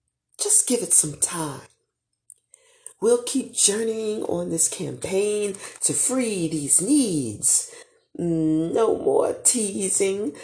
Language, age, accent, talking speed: English, 40-59, American, 105 wpm